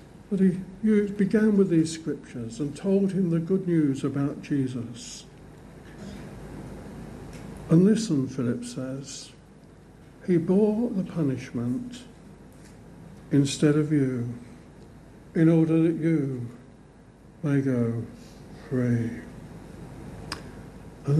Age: 60-79